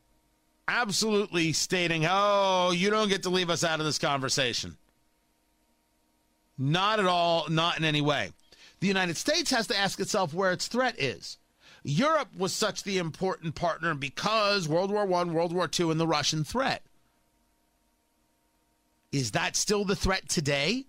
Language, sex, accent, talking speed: English, male, American, 155 wpm